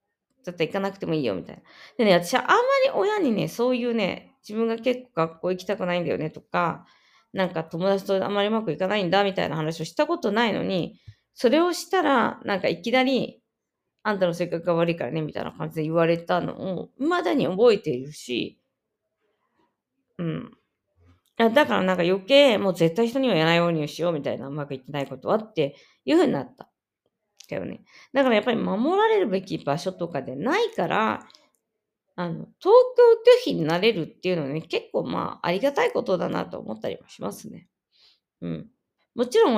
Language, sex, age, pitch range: Japanese, female, 20-39, 170-260 Hz